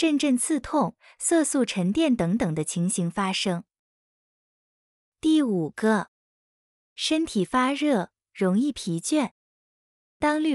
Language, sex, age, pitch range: Chinese, female, 20-39, 190-280 Hz